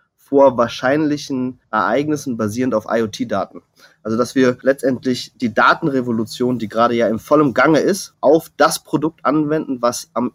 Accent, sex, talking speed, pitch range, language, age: German, male, 145 wpm, 115-150 Hz, English, 30-49